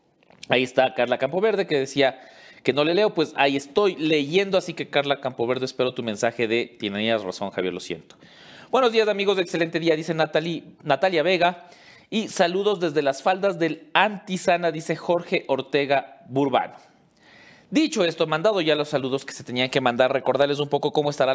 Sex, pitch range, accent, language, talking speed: male, 135-170 Hz, Mexican, English, 175 wpm